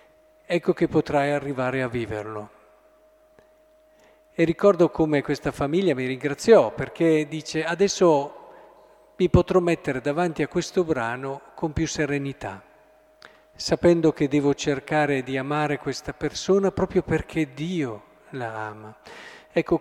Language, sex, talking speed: Italian, male, 120 wpm